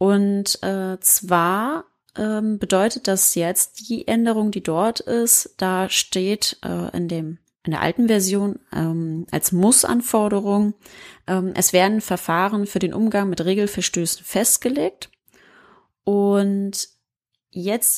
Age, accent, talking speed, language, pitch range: 20-39, German, 125 wpm, German, 165-200 Hz